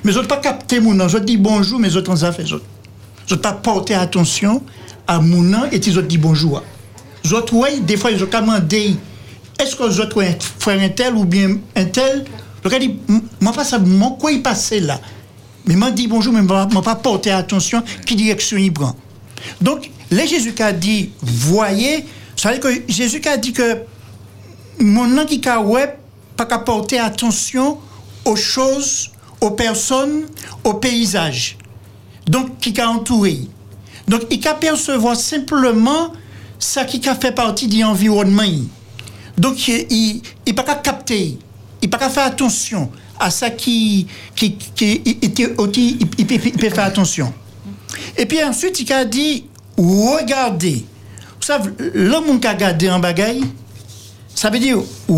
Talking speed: 155 wpm